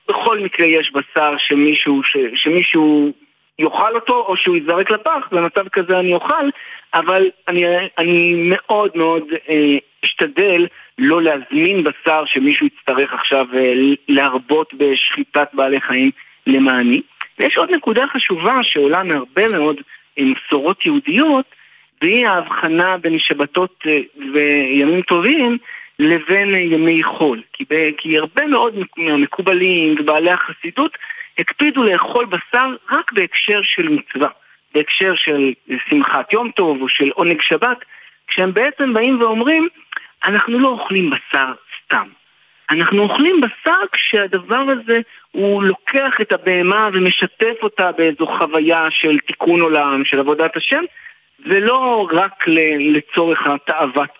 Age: 50-69